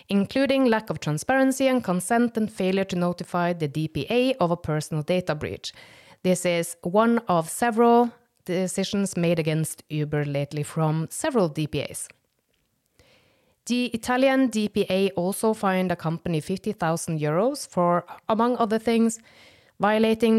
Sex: female